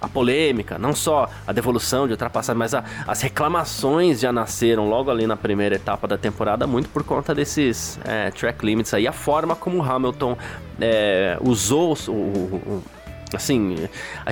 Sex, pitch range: male, 110-155 Hz